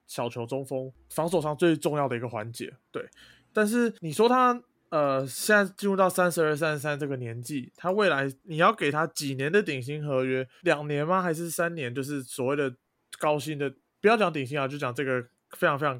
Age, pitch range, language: 20-39, 125-165 Hz, Chinese